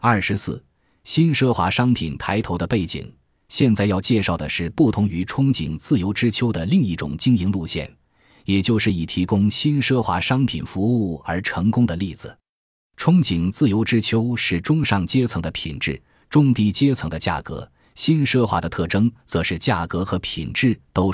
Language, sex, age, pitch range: Chinese, male, 20-39, 85-120 Hz